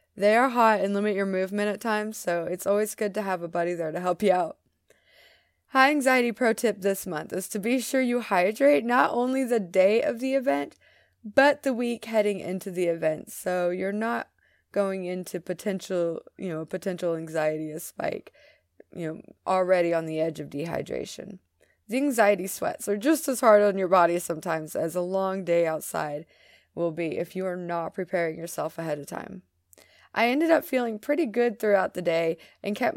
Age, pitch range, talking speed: 20-39, 170-220 Hz, 190 wpm